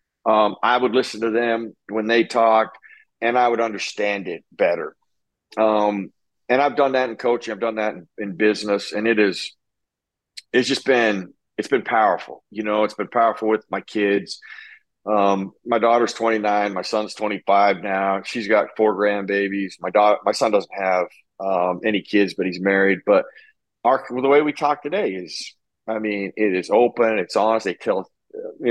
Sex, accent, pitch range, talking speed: male, American, 100-120 Hz, 180 wpm